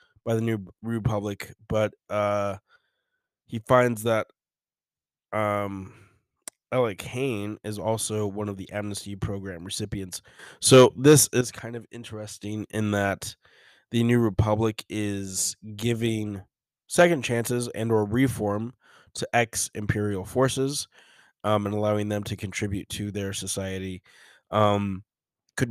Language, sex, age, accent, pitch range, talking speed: English, male, 20-39, American, 100-120 Hz, 125 wpm